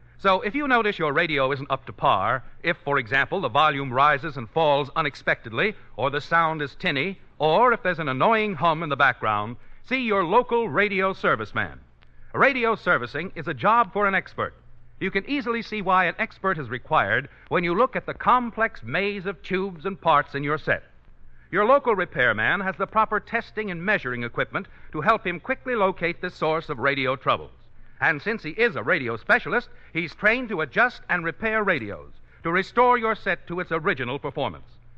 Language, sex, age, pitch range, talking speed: English, male, 60-79, 145-215 Hz, 190 wpm